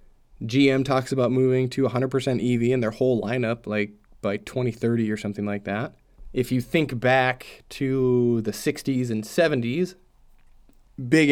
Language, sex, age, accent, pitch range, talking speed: English, male, 20-39, American, 110-135 Hz, 150 wpm